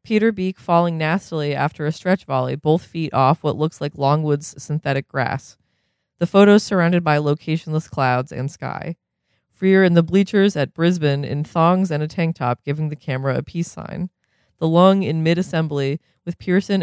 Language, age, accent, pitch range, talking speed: English, 20-39, American, 140-170 Hz, 175 wpm